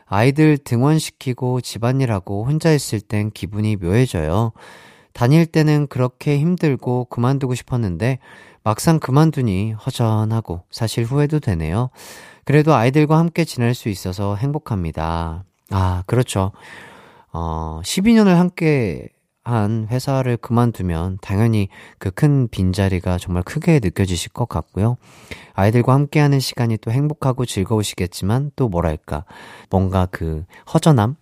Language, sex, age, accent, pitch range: Korean, male, 30-49, native, 100-150 Hz